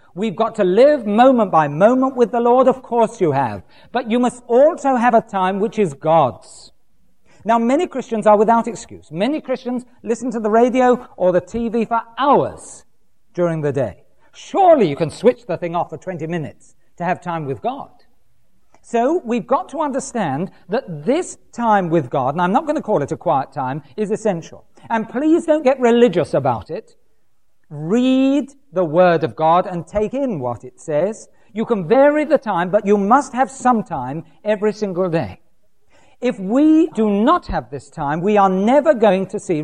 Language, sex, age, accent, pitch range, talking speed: English, male, 40-59, British, 175-260 Hz, 190 wpm